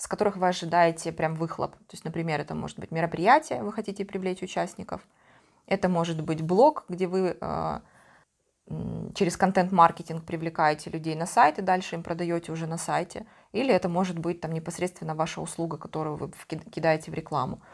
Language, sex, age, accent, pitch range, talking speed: Russian, female, 20-39, native, 160-190 Hz, 170 wpm